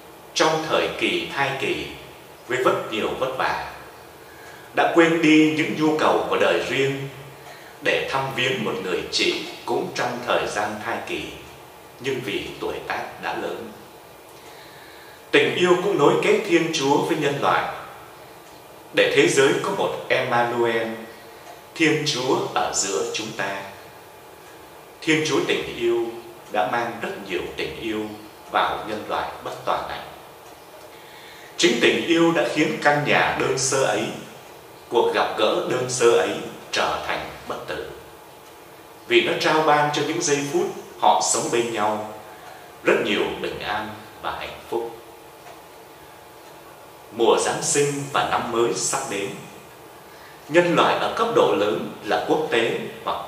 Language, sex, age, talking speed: Vietnamese, male, 30-49, 150 wpm